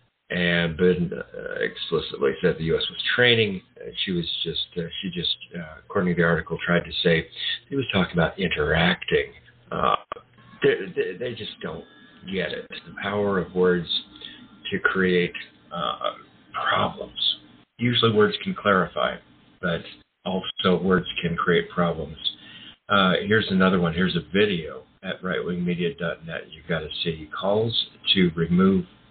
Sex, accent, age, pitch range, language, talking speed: male, American, 50-69, 85-105 Hz, English, 140 wpm